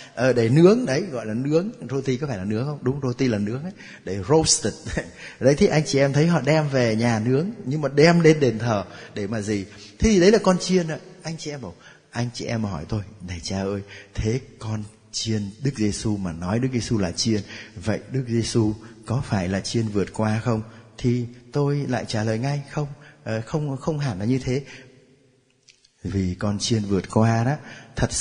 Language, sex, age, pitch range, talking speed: Vietnamese, male, 20-39, 110-150 Hz, 215 wpm